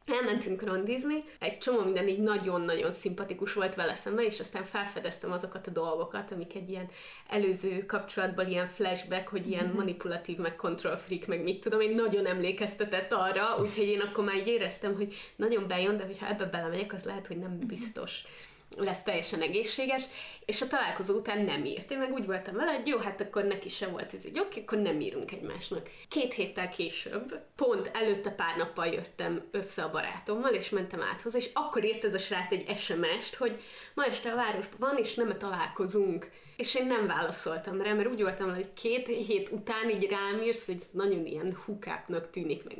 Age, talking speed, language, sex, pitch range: 20-39, 195 wpm, Hungarian, female, 185-235 Hz